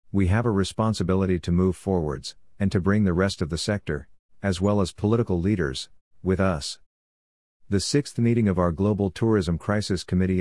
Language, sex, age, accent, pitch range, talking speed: English, male, 50-69, American, 85-100 Hz, 180 wpm